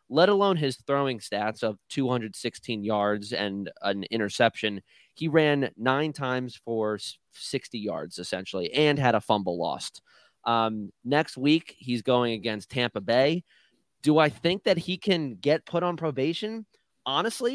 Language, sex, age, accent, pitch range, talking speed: English, male, 20-39, American, 110-135 Hz, 145 wpm